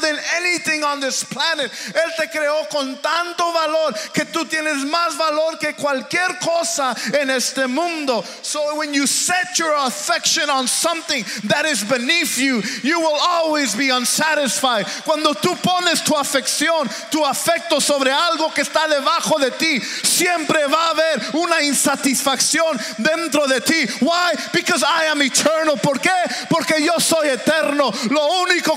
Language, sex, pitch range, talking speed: English, male, 240-315 Hz, 155 wpm